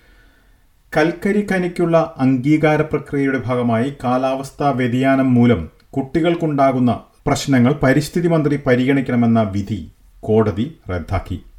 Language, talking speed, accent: Malayalam, 80 wpm, native